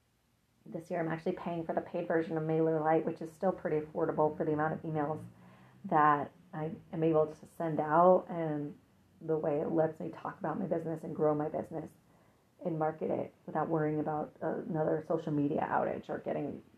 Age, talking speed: 30-49, 195 wpm